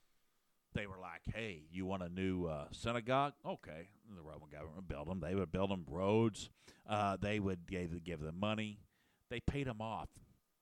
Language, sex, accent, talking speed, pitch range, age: English, male, American, 200 wpm, 100-125 Hz, 50-69